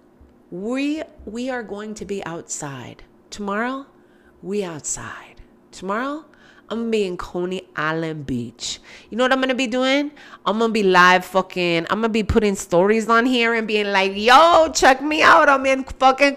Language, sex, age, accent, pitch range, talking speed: English, female, 30-49, American, 190-270 Hz, 170 wpm